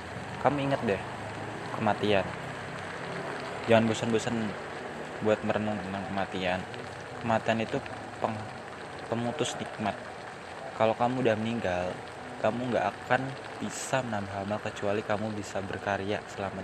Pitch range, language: 100-120 Hz, Indonesian